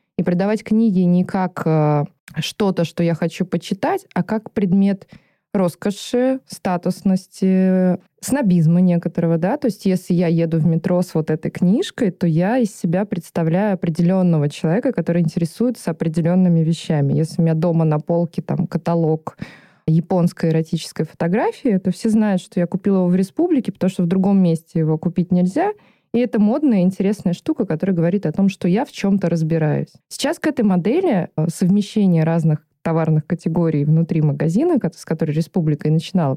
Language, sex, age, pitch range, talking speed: Russian, female, 20-39, 165-205 Hz, 155 wpm